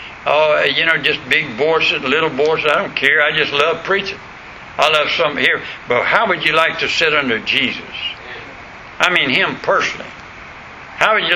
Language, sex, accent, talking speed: English, male, American, 185 wpm